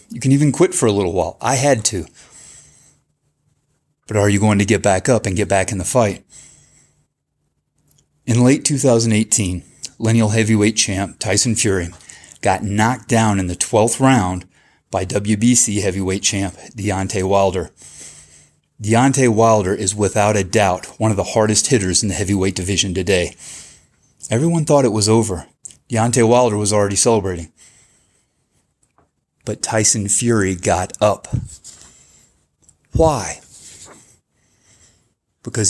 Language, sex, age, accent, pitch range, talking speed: English, male, 30-49, American, 100-125 Hz, 135 wpm